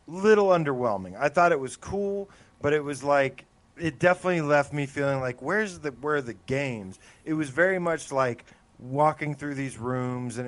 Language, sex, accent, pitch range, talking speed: English, male, American, 120-160 Hz, 190 wpm